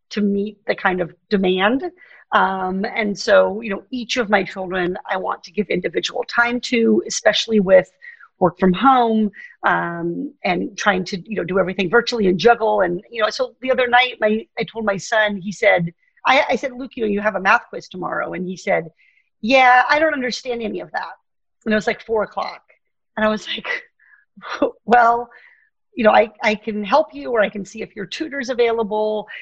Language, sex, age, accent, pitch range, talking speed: English, female, 40-59, American, 205-270 Hz, 205 wpm